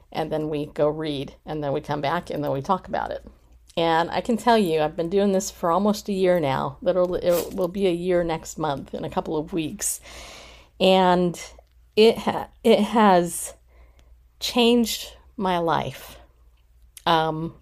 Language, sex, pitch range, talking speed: English, female, 155-195 Hz, 175 wpm